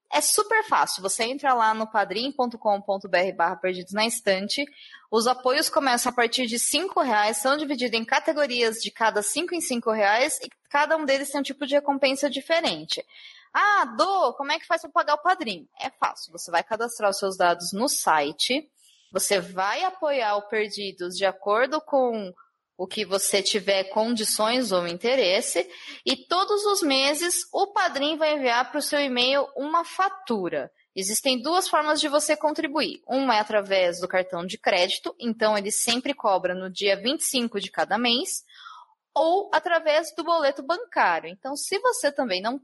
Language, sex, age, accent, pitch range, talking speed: Portuguese, female, 20-39, Brazilian, 205-315 Hz, 170 wpm